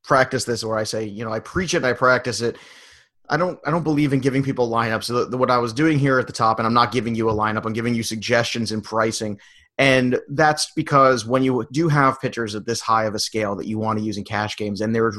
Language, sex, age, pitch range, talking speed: English, male, 30-49, 115-135 Hz, 270 wpm